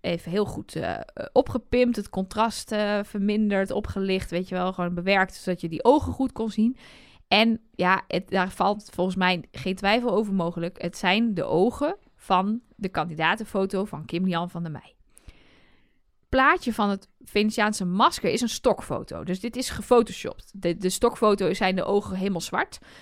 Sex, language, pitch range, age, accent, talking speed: female, Dutch, 185-230 Hz, 20-39, Dutch, 175 wpm